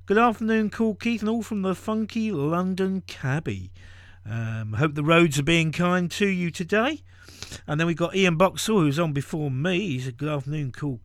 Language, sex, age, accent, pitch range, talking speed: English, male, 50-69, British, 130-175 Hz, 195 wpm